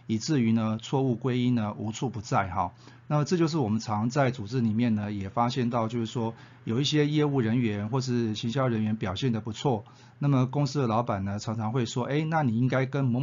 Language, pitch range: Chinese, 110-125 Hz